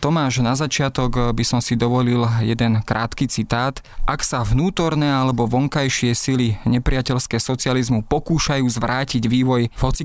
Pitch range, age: 115-130 Hz, 20-39